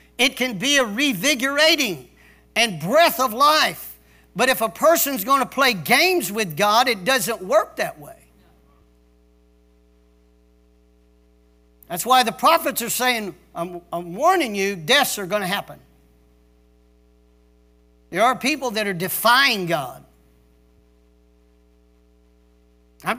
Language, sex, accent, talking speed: English, male, American, 120 wpm